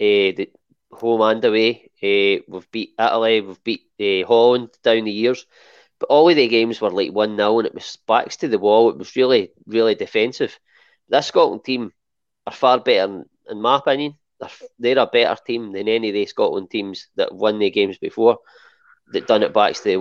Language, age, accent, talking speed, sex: English, 20-39, British, 205 wpm, male